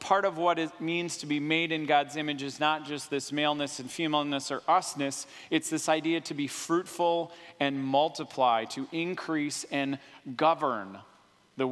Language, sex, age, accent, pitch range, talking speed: English, male, 30-49, American, 140-165 Hz, 170 wpm